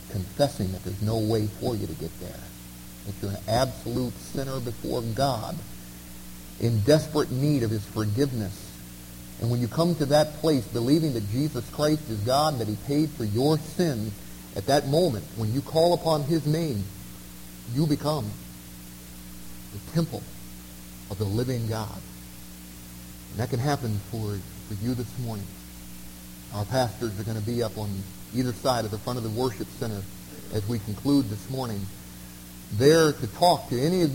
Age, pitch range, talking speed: 40-59, 95-145 Hz, 170 wpm